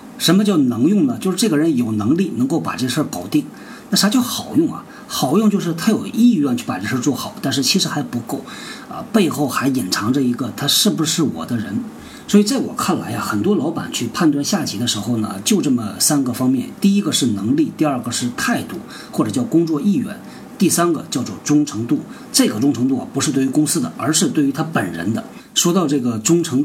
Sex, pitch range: male, 145-240 Hz